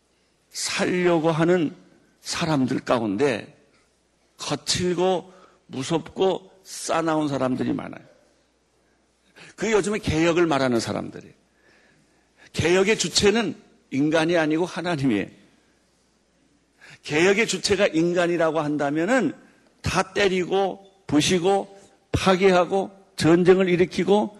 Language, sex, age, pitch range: Korean, male, 50-69, 150-195 Hz